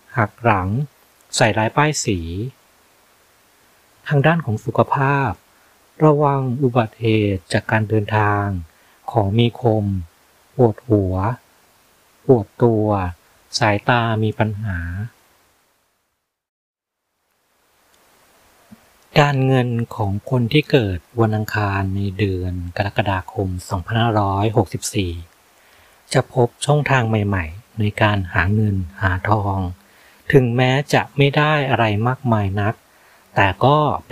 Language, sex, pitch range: Thai, male, 100-130 Hz